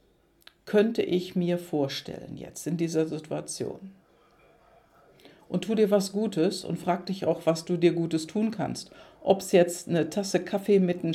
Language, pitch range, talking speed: German, 165-195 Hz, 165 wpm